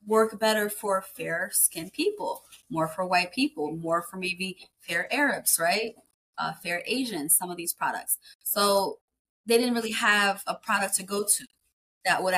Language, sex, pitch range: English, female, 175-220 Hz